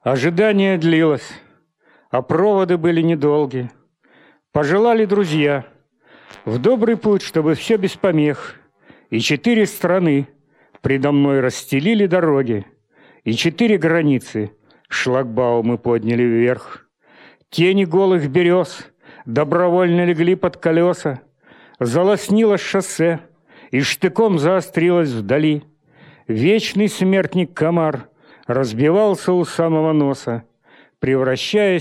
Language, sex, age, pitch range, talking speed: Russian, male, 50-69, 130-180 Hz, 90 wpm